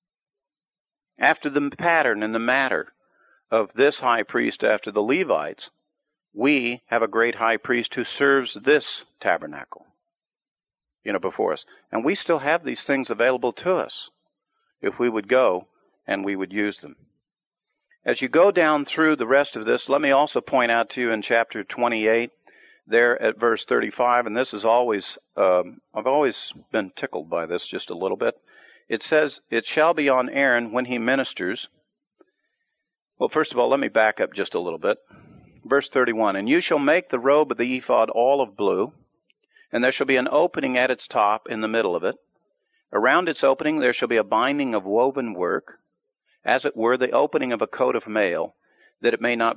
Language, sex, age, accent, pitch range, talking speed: English, male, 50-69, American, 115-155 Hz, 190 wpm